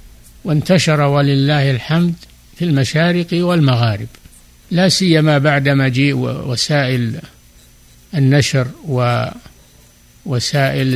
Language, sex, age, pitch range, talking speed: Arabic, male, 60-79, 115-150 Hz, 70 wpm